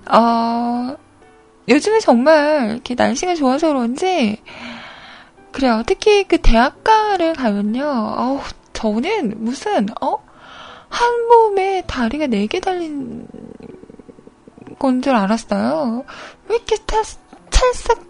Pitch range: 225-315 Hz